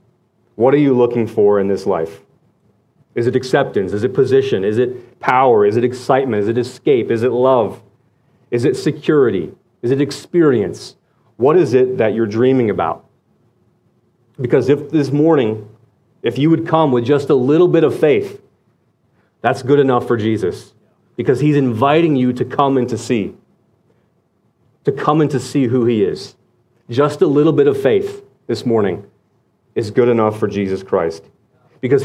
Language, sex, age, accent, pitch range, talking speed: English, male, 30-49, American, 120-150 Hz, 170 wpm